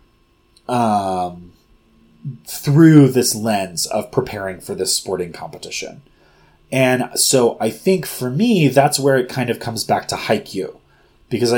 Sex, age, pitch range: male, 30-49, 115-140 Hz